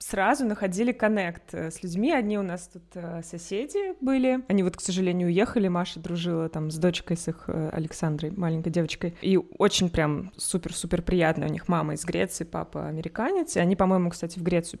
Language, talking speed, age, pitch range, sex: Russian, 185 wpm, 20-39, 170-200 Hz, female